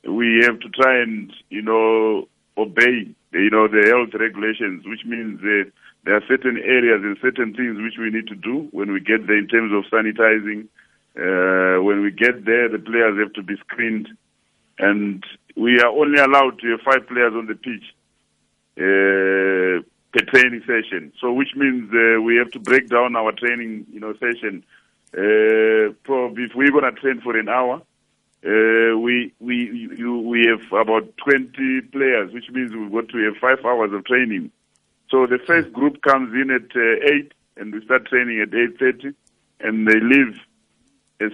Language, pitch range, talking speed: English, 110-130 Hz, 180 wpm